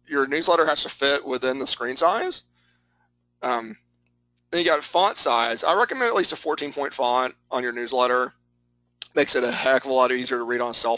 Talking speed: 210 wpm